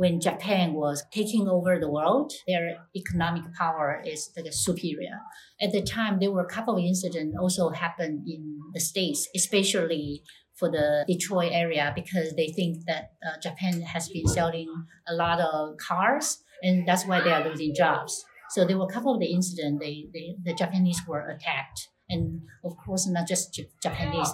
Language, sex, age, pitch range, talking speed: English, female, 60-79, 160-190 Hz, 180 wpm